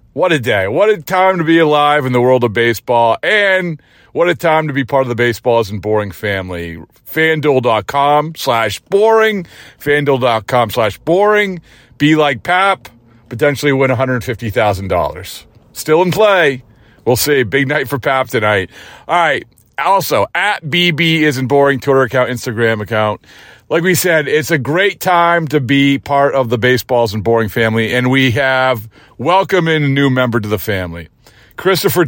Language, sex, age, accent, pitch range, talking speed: English, male, 40-59, American, 120-170 Hz, 165 wpm